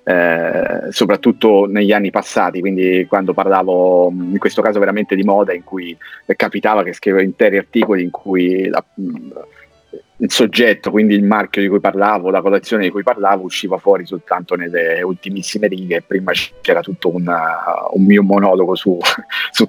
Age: 30-49